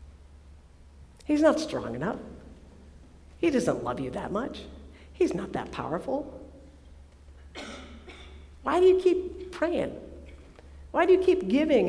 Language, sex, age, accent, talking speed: English, female, 50-69, American, 120 wpm